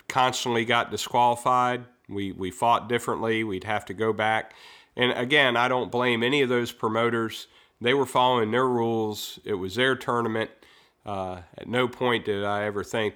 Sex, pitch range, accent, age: male, 100-120 Hz, American, 40-59